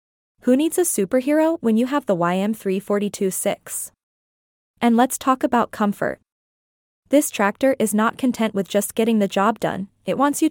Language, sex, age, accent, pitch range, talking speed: English, female, 20-39, American, 200-250 Hz, 165 wpm